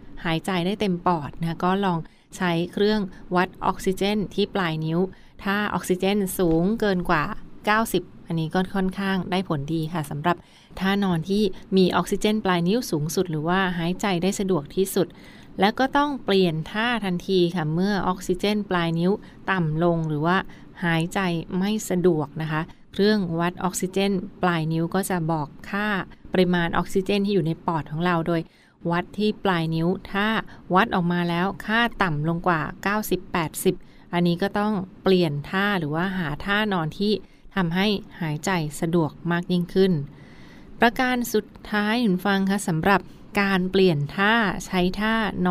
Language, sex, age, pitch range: Thai, female, 20-39, 170-200 Hz